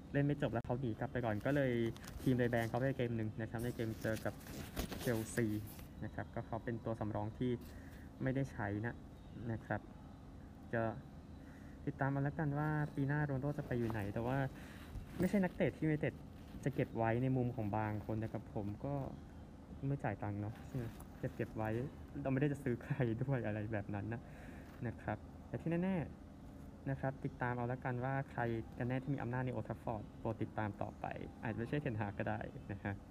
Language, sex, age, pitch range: Thai, male, 20-39, 100-130 Hz